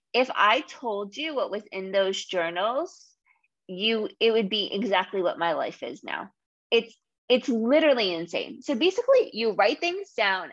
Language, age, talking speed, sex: English, 20-39, 165 wpm, female